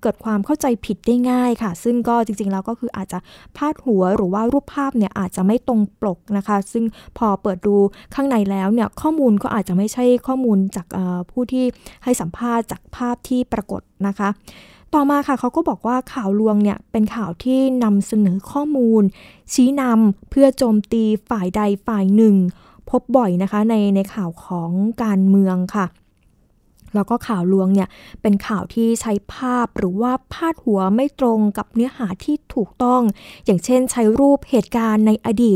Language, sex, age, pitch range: Thai, female, 20-39, 200-250 Hz